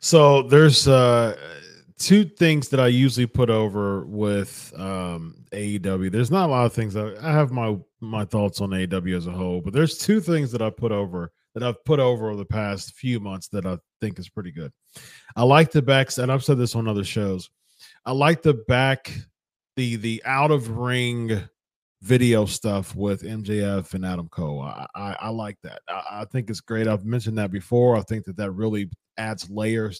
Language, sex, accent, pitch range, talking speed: English, male, American, 100-130 Hz, 200 wpm